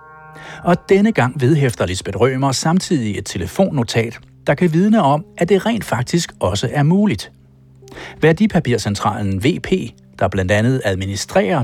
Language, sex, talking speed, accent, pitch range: Danish, male, 135 wpm, native, 100-160 Hz